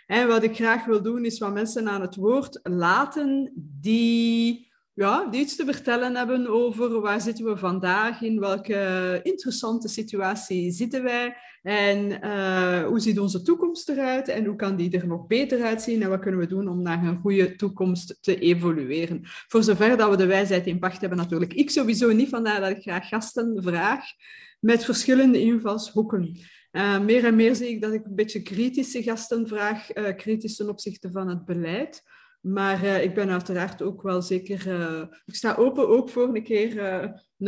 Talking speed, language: 185 wpm, Dutch